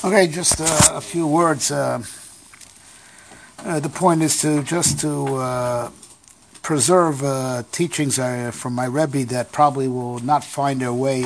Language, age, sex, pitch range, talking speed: English, 50-69, male, 125-160 Hz, 155 wpm